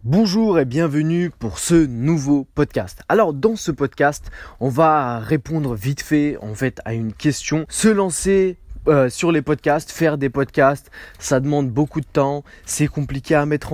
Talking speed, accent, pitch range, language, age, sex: 170 wpm, French, 130-175 Hz, French, 20-39, male